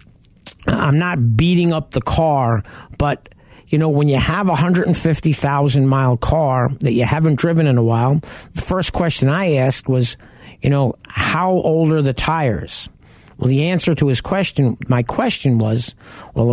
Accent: American